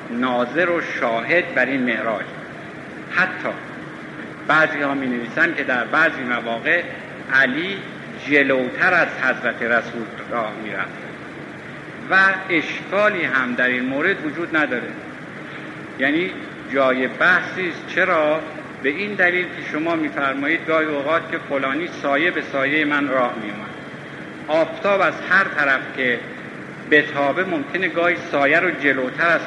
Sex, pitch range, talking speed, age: male, 135-180 Hz, 130 wpm, 50-69